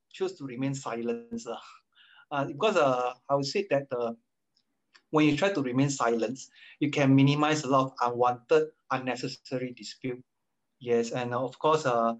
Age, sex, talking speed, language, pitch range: 20-39, male, 155 wpm, English, 125-155 Hz